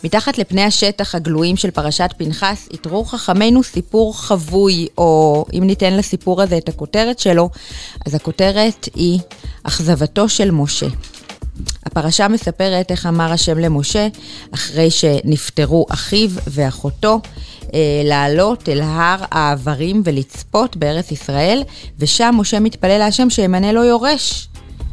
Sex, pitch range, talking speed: female, 150-200 Hz, 120 wpm